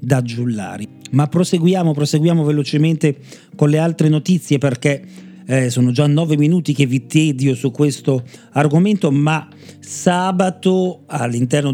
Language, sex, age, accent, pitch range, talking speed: Italian, male, 40-59, native, 125-155 Hz, 130 wpm